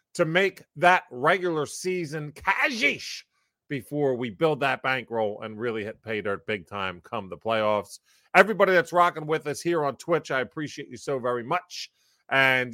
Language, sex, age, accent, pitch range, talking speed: English, male, 30-49, American, 125-175 Hz, 170 wpm